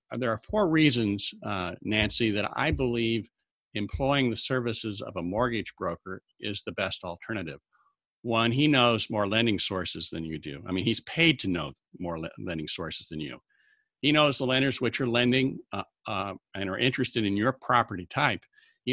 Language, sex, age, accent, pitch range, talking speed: English, male, 60-79, American, 100-125 Hz, 180 wpm